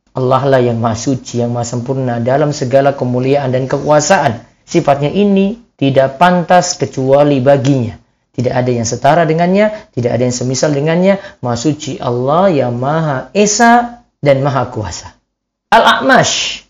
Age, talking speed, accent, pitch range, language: 40-59, 135 wpm, native, 135-205 Hz, Indonesian